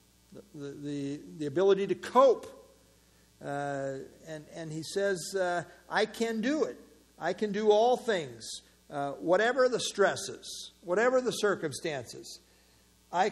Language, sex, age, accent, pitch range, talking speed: English, male, 50-69, American, 135-190 Hz, 130 wpm